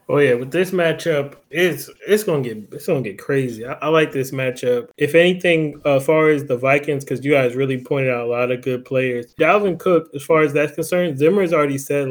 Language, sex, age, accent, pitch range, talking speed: English, male, 20-39, American, 135-155 Hz, 235 wpm